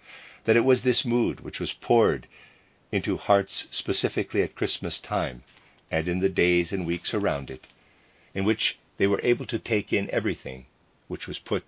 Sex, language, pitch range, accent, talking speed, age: male, English, 80-115 Hz, American, 175 wpm, 50-69